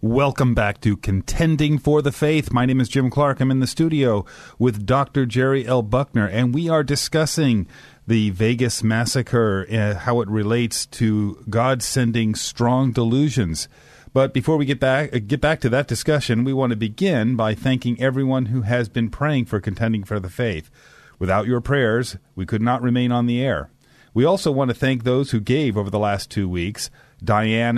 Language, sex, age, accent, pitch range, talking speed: English, male, 40-59, American, 110-140 Hz, 190 wpm